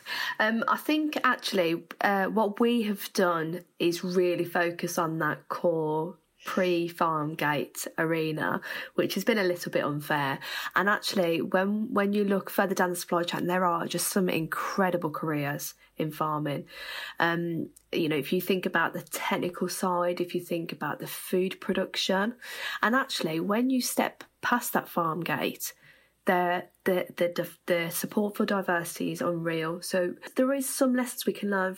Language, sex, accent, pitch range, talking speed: English, female, British, 170-200 Hz, 165 wpm